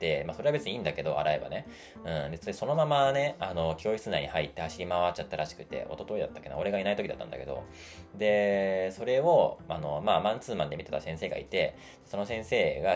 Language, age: Japanese, 20-39